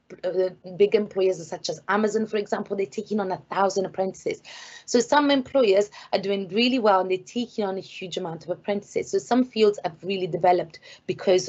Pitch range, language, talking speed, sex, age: 180-220 Hz, English, 190 wpm, female, 30-49